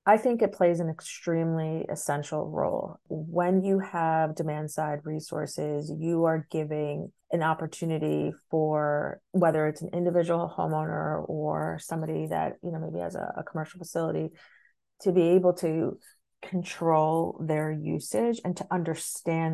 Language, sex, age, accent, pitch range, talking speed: English, female, 30-49, American, 160-180 Hz, 140 wpm